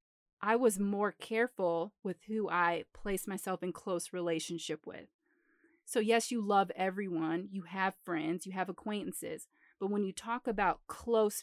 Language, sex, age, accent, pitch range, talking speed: English, female, 30-49, American, 180-225 Hz, 160 wpm